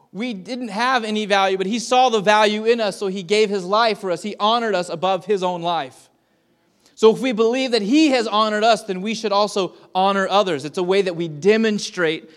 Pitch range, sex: 165-205 Hz, male